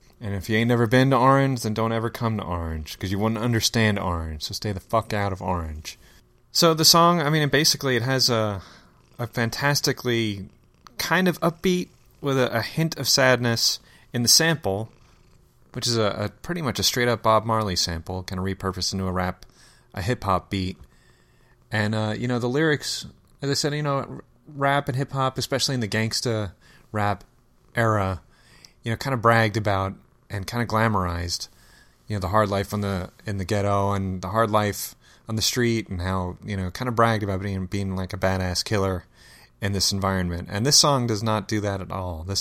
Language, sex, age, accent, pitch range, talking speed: English, male, 30-49, American, 95-120 Hz, 210 wpm